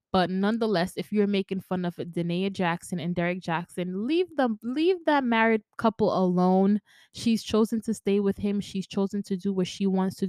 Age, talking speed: 20-39, 190 wpm